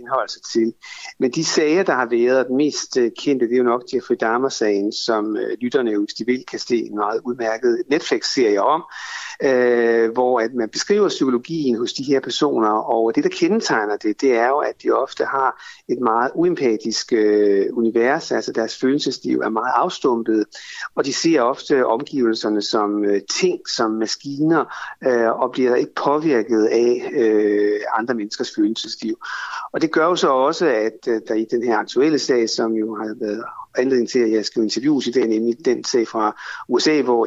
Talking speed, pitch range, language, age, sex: 180 wpm, 110-145 Hz, Danish, 60-79, male